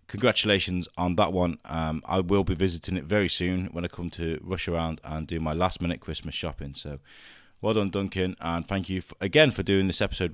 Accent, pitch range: British, 80-100 Hz